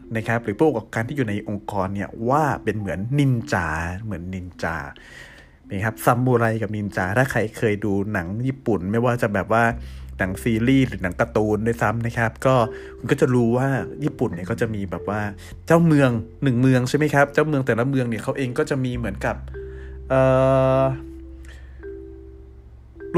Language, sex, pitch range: Thai, male, 105-150 Hz